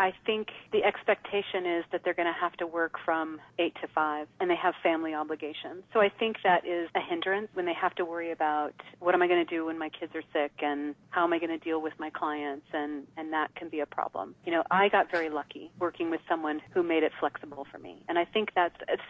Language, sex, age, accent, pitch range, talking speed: English, female, 40-59, American, 150-180 Hz, 250 wpm